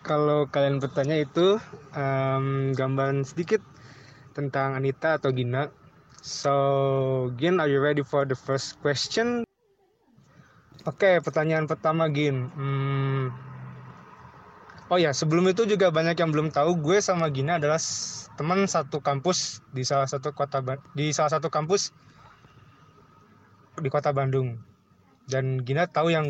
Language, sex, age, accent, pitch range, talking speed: Indonesian, male, 20-39, native, 135-165 Hz, 135 wpm